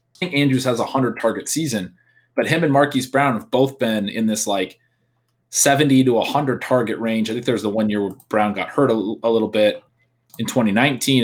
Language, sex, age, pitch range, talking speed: English, male, 30-49, 105-130 Hz, 205 wpm